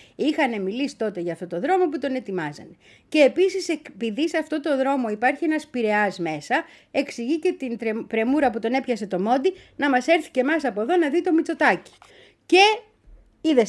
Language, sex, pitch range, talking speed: Greek, female, 205-305 Hz, 190 wpm